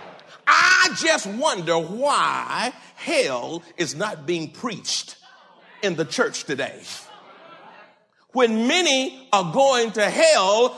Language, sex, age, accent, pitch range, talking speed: English, male, 50-69, American, 225-335 Hz, 105 wpm